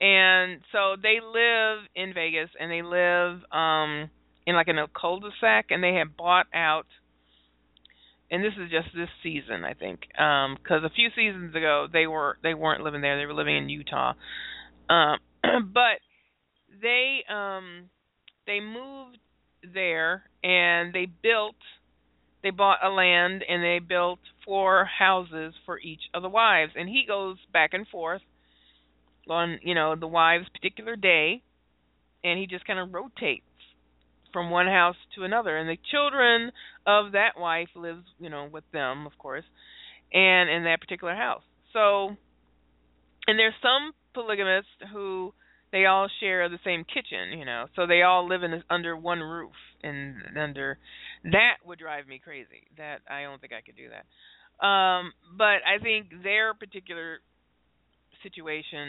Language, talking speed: English, 160 wpm